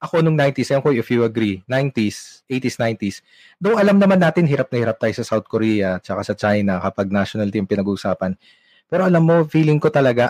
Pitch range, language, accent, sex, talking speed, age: 115-155 Hz, Filipino, native, male, 185 wpm, 20-39